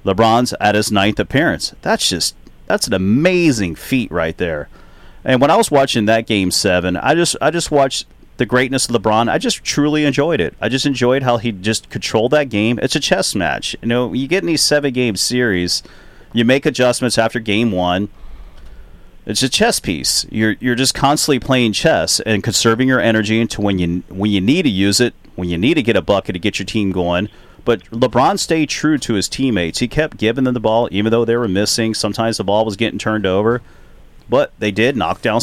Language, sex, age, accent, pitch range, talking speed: English, male, 30-49, American, 100-125 Hz, 215 wpm